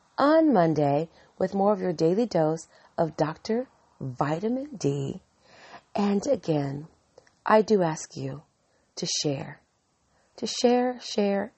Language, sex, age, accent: English, female, 40-59, American